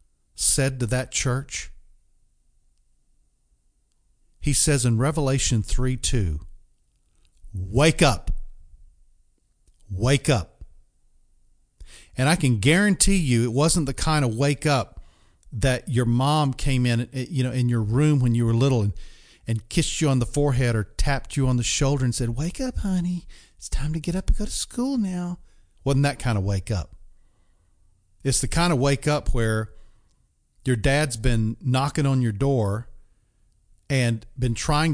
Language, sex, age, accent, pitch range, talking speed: English, male, 50-69, American, 95-135 Hz, 155 wpm